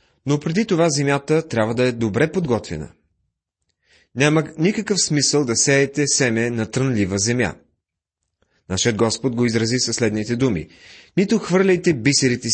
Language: Bulgarian